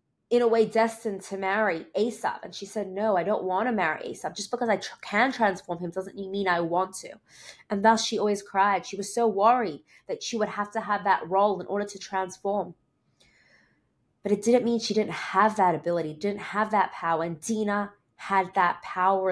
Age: 20-39